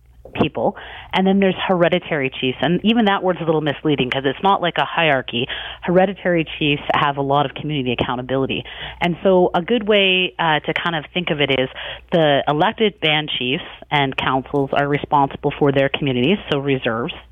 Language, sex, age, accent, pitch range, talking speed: English, female, 30-49, American, 140-175 Hz, 185 wpm